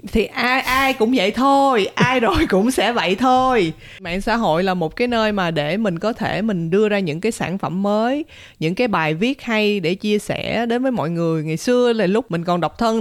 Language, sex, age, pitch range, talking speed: Vietnamese, female, 20-39, 165-225 Hz, 240 wpm